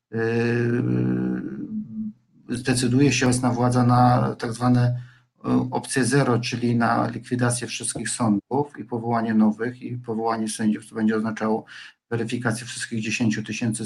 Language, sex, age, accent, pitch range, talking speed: Polish, male, 50-69, native, 110-125 Hz, 120 wpm